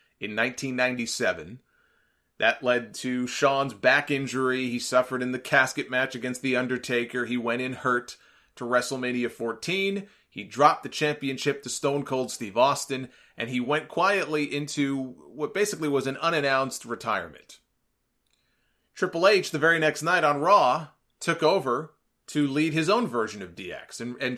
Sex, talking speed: male, 155 wpm